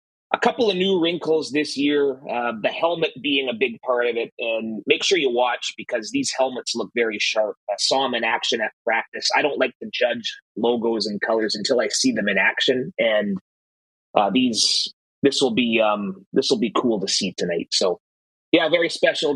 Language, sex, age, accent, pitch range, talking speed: English, male, 30-49, American, 100-140 Hz, 205 wpm